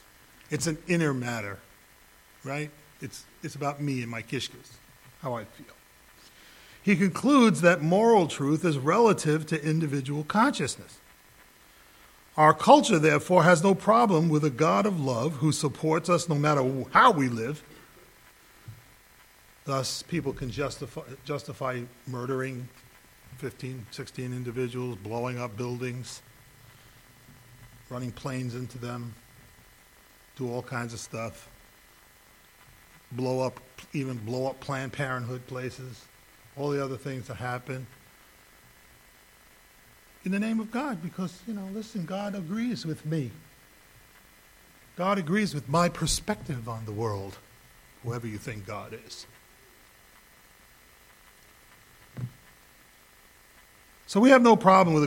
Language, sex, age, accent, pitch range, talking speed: English, male, 40-59, American, 120-155 Hz, 120 wpm